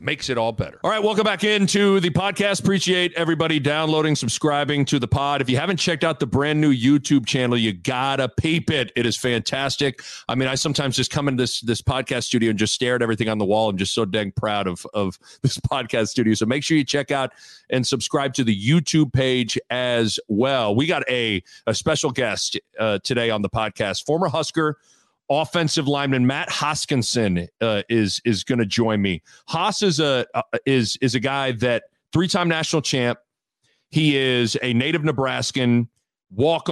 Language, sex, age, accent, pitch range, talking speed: English, male, 40-59, American, 120-150 Hz, 200 wpm